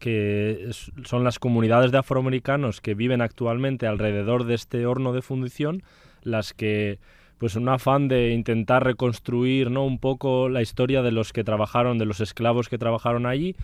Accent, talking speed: Spanish, 165 wpm